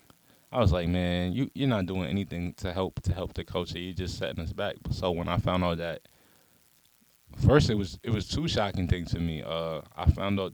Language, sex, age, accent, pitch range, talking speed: English, male, 20-39, American, 90-105 Hz, 230 wpm